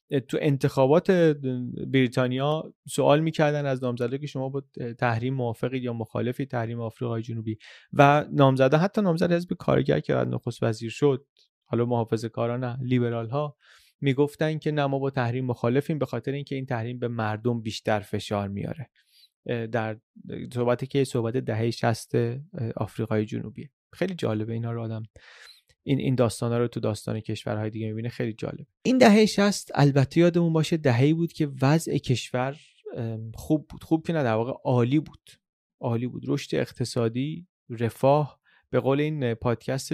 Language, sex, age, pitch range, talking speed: Persian, male, 30-49, 115-145 Hz, 155 wpm